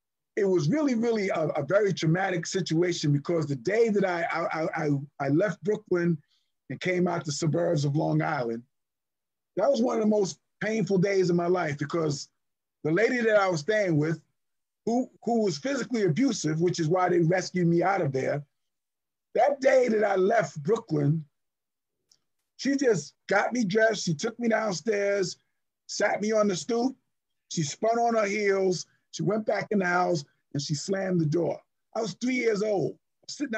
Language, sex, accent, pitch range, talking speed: Hebrew, male, American, 155-210 Hz, 180 wpm